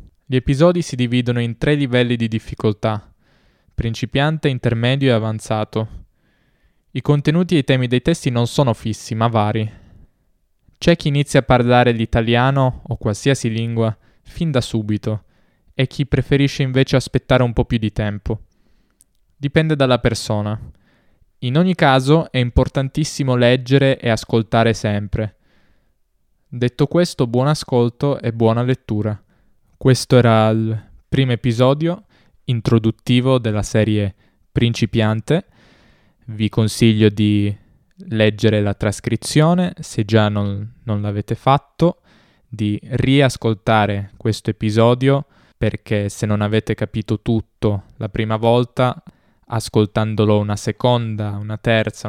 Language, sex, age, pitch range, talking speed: Italian, male, 10-29, 110-130 Hz, 120 wpm